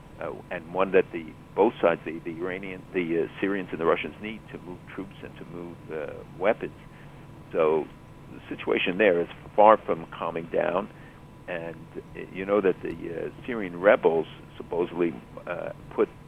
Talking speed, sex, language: 170 wpm, male, English